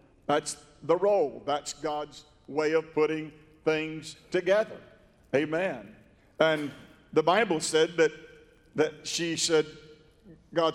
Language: English